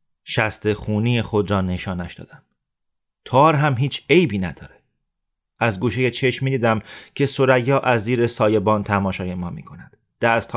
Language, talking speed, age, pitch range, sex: Persian, 140 wpm, 30-49, 105-130 Hz, male